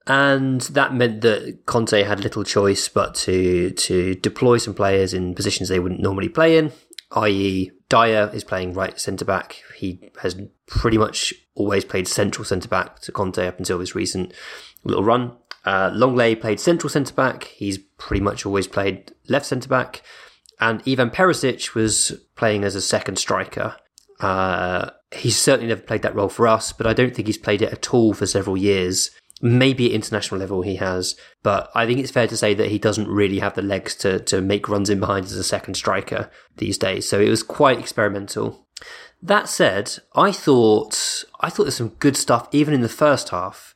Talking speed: 190 wpm